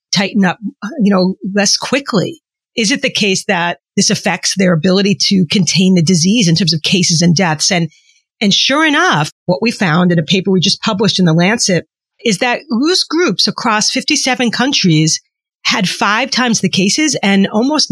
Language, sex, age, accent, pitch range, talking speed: English, female, 40-59, American, 180-245 Hz, 185 wpm